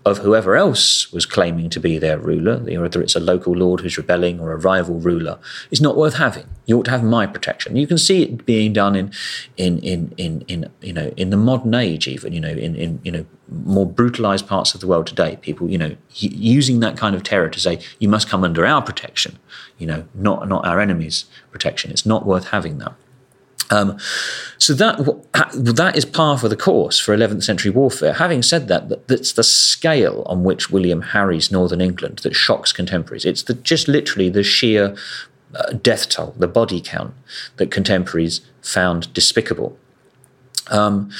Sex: male